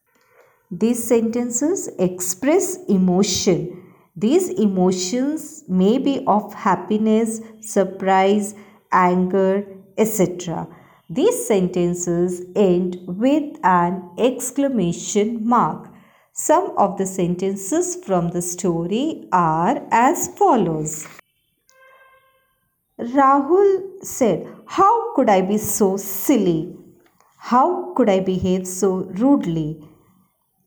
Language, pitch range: Hindi, 180-245 Hz